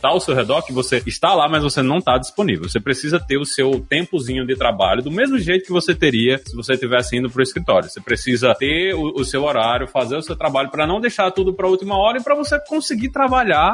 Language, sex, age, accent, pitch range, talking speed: Portuguese, male, 20-39, Brazilian, 130-180 Hz, 255 wpm